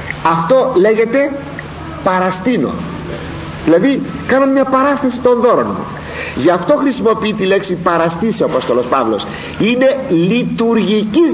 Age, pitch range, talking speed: 50-69, 200-275 Hz, 100 wpm